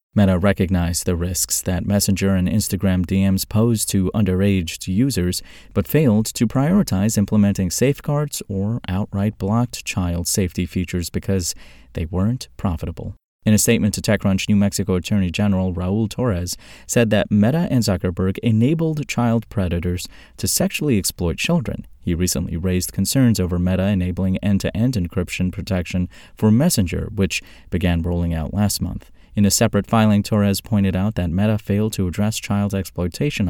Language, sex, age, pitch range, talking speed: English, male, 30-49, 90-115 Hz, 150 wpm